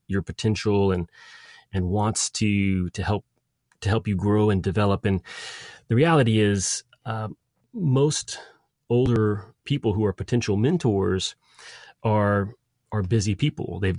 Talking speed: 135 wpm